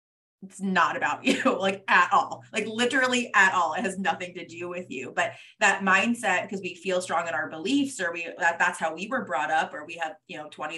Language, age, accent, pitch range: English, 20-39, American, 170-215 Hz